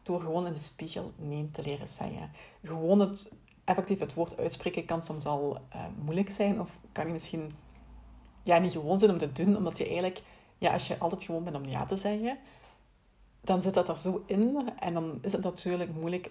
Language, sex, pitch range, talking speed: Dutch, female, 160-195 Hz, 210 wpm